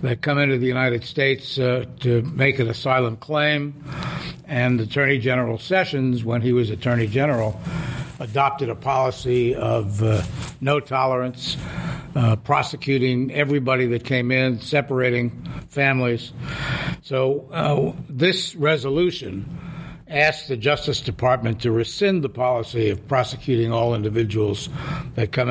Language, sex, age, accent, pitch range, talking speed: English, male, 60-79, American, 120-145 Hz, 125 wpm